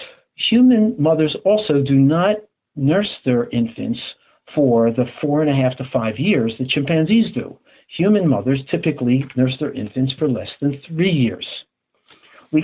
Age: 60-79